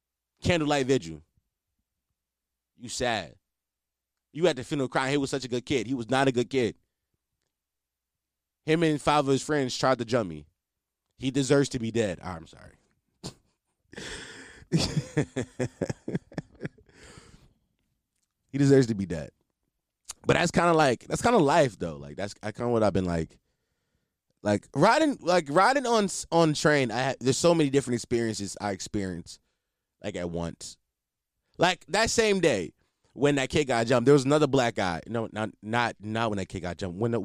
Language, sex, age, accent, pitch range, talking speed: English, male, 20-39, American, 105-155 Hz, 170 wpm